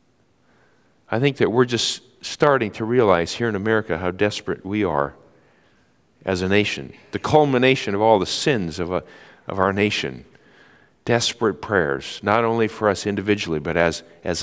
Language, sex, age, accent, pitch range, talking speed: English, male, 50-69, American, 105-160 Hz, 160 wpm